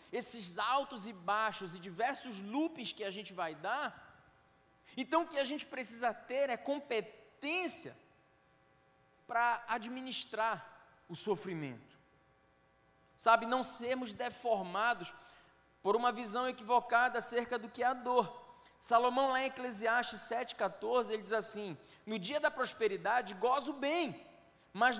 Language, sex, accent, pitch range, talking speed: Portuguese, male, Brazilian, 200-265 Hz, 130 wpm